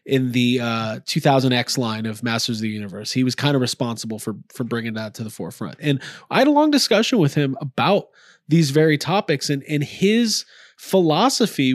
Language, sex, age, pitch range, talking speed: English, male, 30-49, 130-175 Hz, 200 wpm